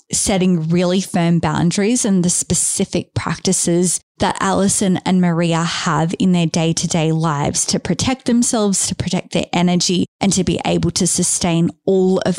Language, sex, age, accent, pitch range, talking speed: English, female, 20-39, Australian, 170-190 Hz, 155 wpm